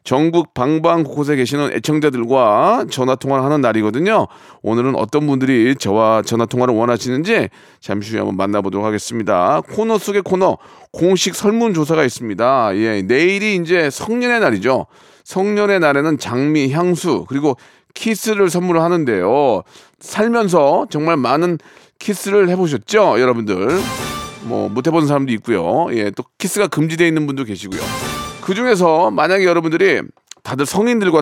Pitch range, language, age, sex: 125-180 Hz, Korean, 40-59, male